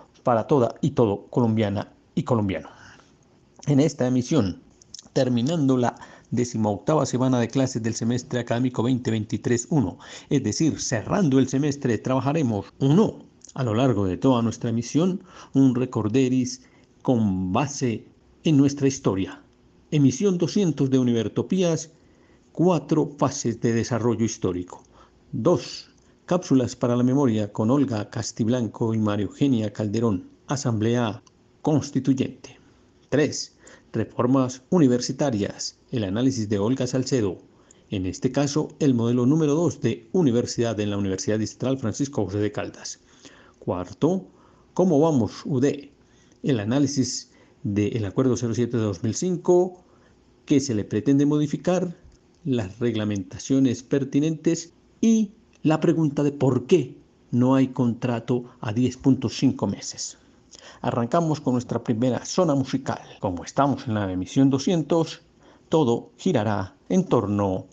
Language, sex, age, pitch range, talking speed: Spanish, male, 50-69, 115-145 Hz, 120 wpm